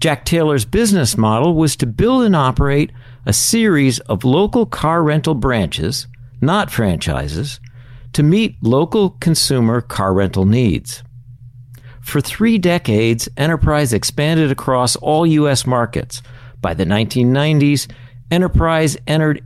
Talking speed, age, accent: 120 wpm, 60-79, American